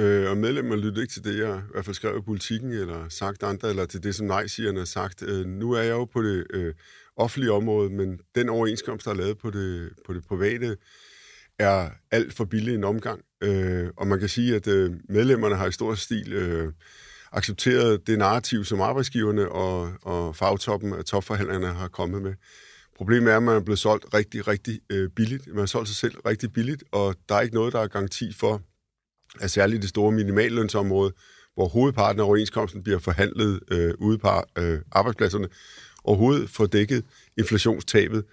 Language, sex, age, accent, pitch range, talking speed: Danish, male, 50-69, native, 100-115 Hz, 185 wpm